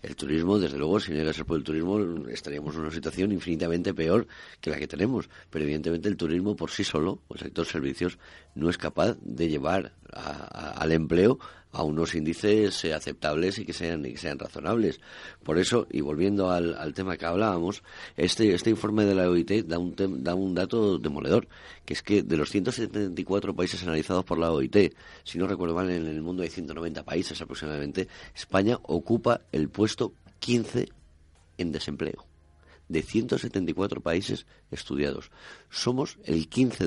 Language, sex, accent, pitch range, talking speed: Spanish, male, Spanish, 80-100 Hz, 175 wpm